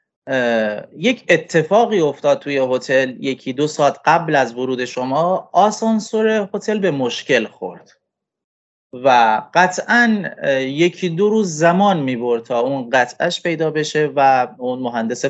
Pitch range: 135-205 Hz